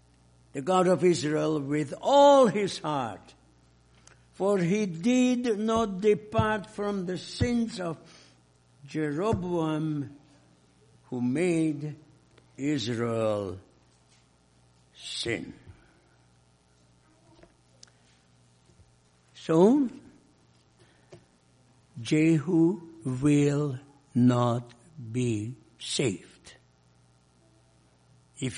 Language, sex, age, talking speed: English, male, 60-79, 60 wpm